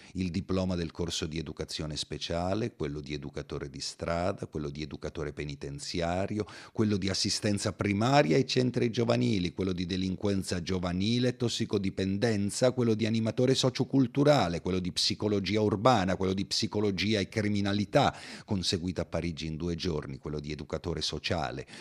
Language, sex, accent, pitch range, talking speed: Italian, male, native, 75-110 Hz, 140 wpm